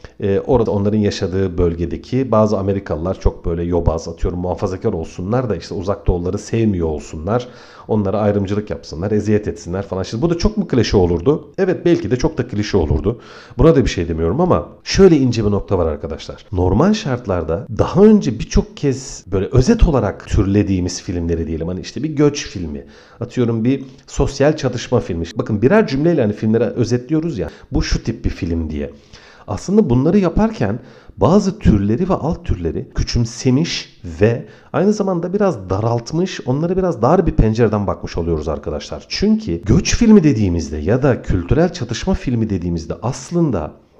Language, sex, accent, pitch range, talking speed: Turkish, male, native, 95-145 Hz, 160 wpm